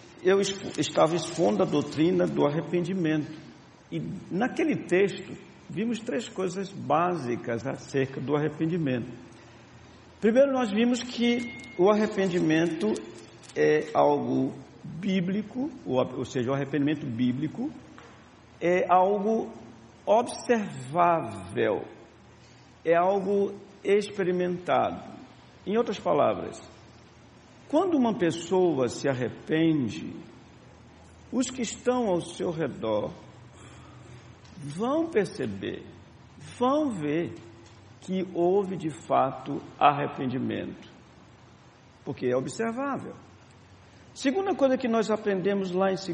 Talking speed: 90 wpm